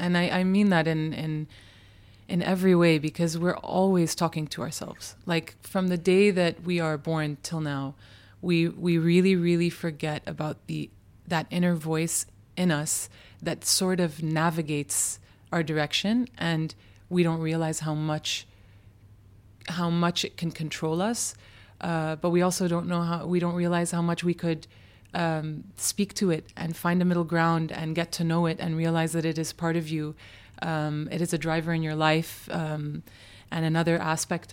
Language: English